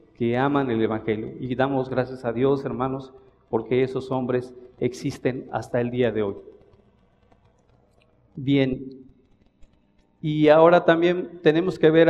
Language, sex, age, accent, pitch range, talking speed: Spanish, male, 50-69, Mexican, 125-150 Hz, 130 wpm